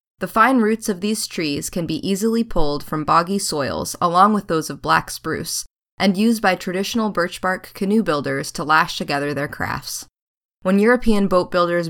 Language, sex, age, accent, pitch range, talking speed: English, female, 20-39, American, 155-215 Hz, 180 wpm